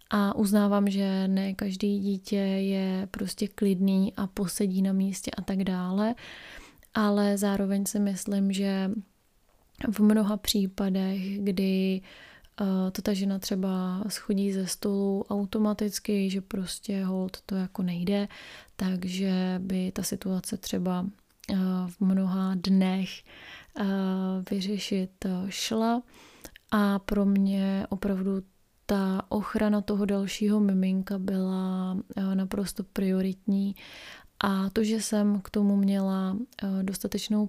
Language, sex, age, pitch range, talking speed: Czech, female, 20-39, 190-205 Hz, 110 wpm